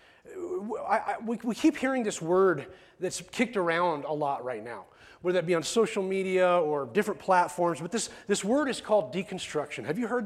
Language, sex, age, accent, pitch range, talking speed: English, male, 30-49, American, 180-240 Hz, 200 wpm